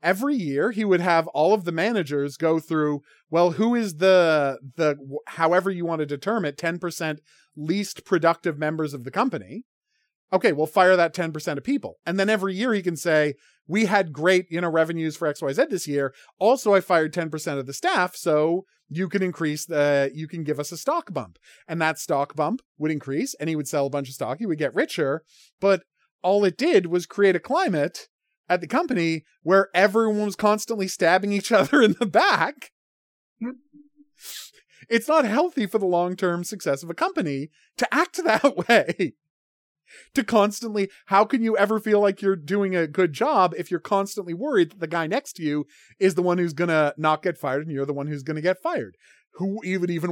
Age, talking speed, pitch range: 30-49, 200 wpm, 155-205 Hz